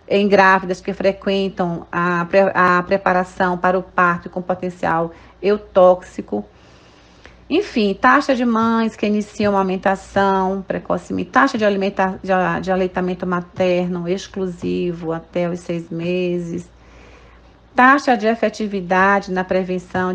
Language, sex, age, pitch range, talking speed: Portuguese, female, 40-59, 170-195 Hz, 110 wpm